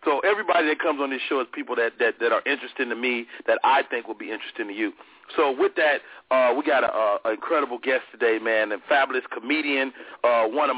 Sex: male